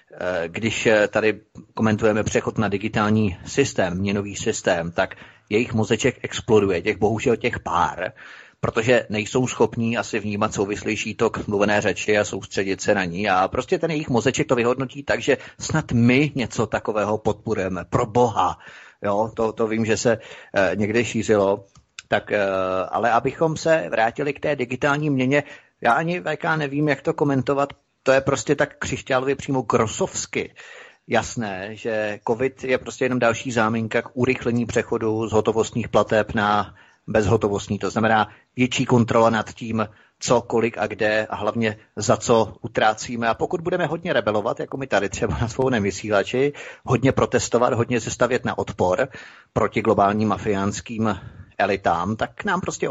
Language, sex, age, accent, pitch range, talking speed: Czech, male, 30-49, native, 105-130 Hz, 155 wpm